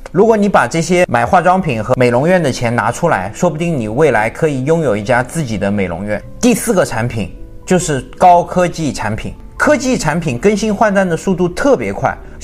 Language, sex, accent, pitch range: Chinese, male, native, 135-205 Hz